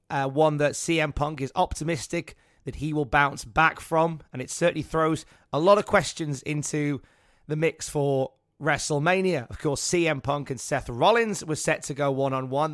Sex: male